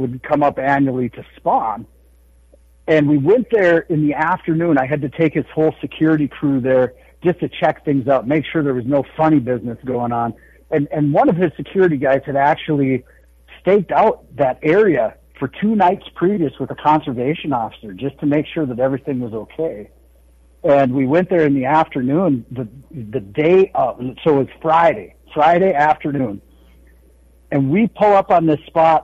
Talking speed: 180 wpm